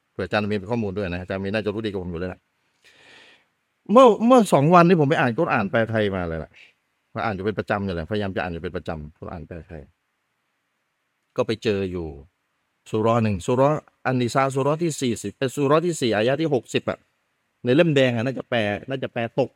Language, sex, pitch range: Thai, male, 105-145 Hz